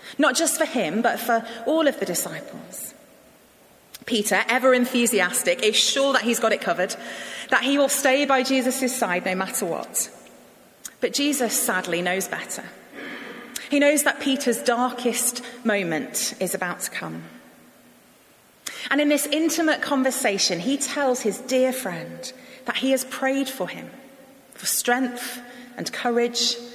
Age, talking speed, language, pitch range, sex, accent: 30-49, 145 wpm, English, 215-270 Hz, female, British